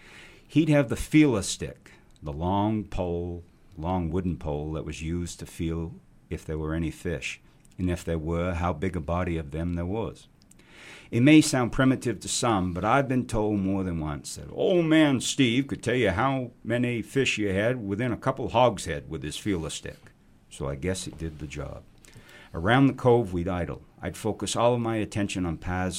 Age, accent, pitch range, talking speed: 60-79, American, 85-110 Hz, 200 wpm